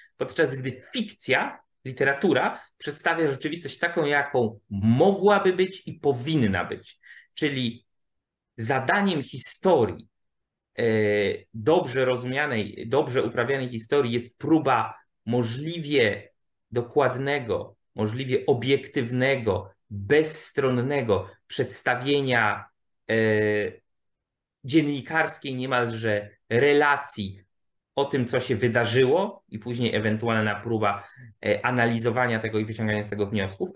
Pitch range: 115-145 Hz